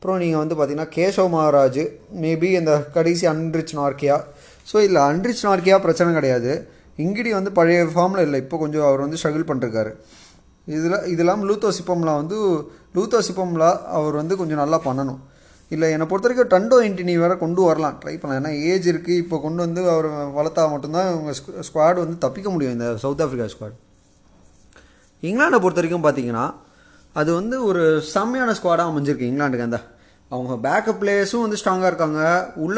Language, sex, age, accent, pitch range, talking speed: Tamil, male, 20-39, native, 150-190 Hz, 160 wpm